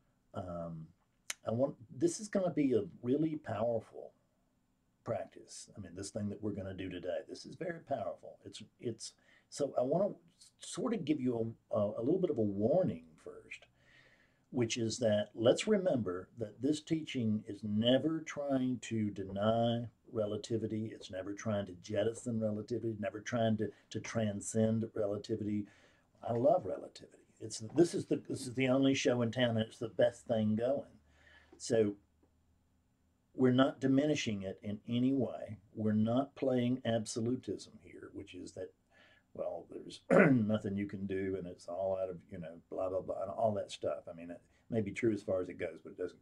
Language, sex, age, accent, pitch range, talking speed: English, male, 50-69, American, 95-125 Hz, 180 wpm